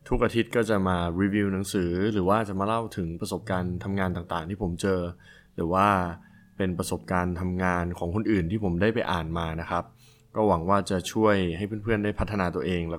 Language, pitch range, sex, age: Thai, 90-110 Hz, male, 20-39